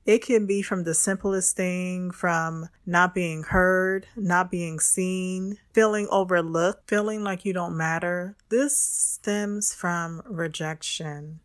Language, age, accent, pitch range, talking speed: English, 20-39, American, 165-195 Hz, 130 wpm